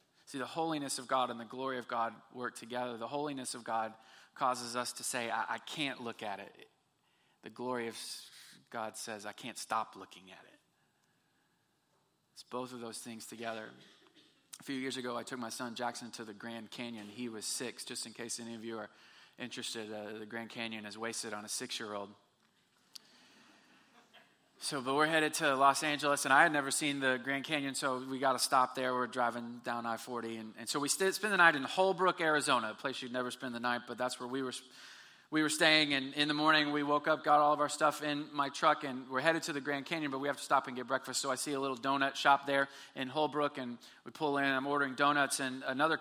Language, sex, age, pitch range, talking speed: English, male, 20-39, 125-155 Hz, 230 wpm